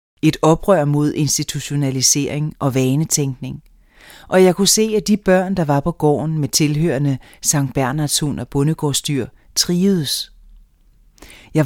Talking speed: 130 wpm